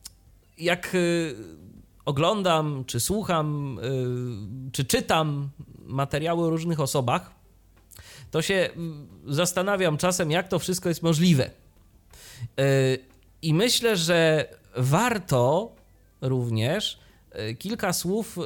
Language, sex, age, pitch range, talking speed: Polish, male, 30-49, 115-165 Hz, 85 wpm